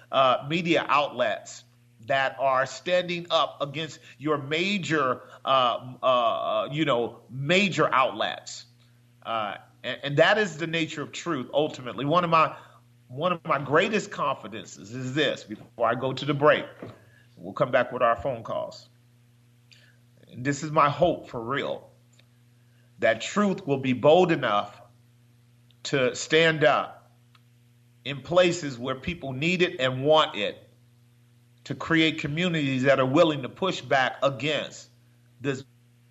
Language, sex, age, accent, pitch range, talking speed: English, male, 40-59, American, 120-150 Hz, 140 wpm